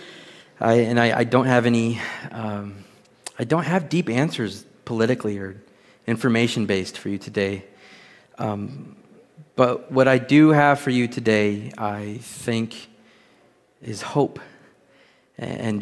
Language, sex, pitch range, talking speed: English, male, 105-125 Hz, 125 wpm